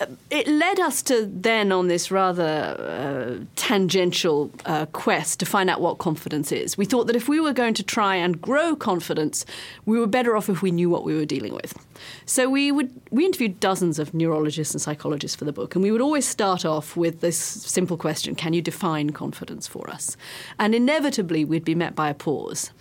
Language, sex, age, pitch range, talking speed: English, female, 40-59, 155-225 Hz, 210 wpm